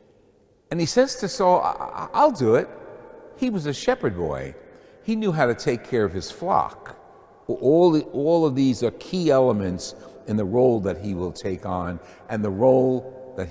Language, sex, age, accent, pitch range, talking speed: English, male, 60-79, American, 115-165 Hz, 180 wpm